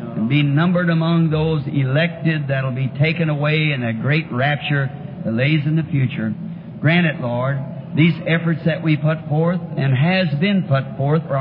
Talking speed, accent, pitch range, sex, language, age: 180 wpm, American, 135-165 Hz, male, English, 60-79